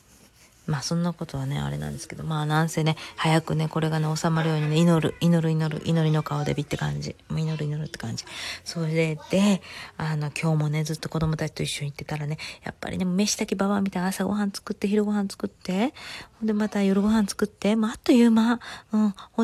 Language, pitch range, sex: Japanese, 165-210 Hz, female